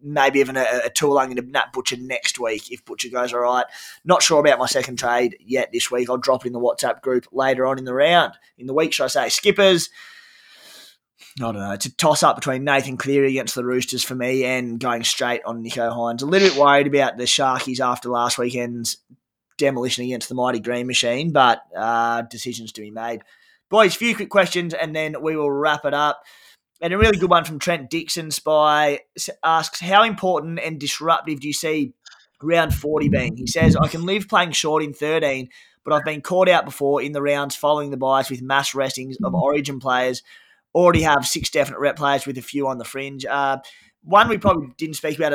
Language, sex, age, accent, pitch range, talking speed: English, male, 20-39, Australian, 125-160 Hz, 215 wpm